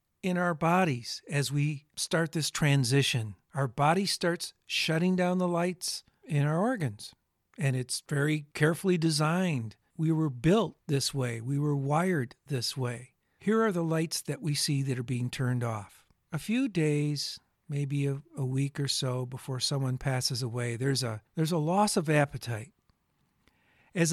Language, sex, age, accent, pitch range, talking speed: English, male, 50-69, American, 130-175 Hz, 165 wpm